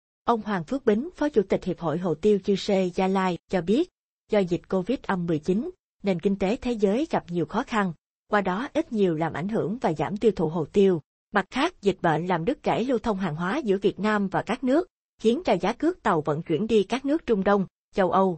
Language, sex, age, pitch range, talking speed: Vietnamese, female, 20-39, 180-230 Hz, 240 wpm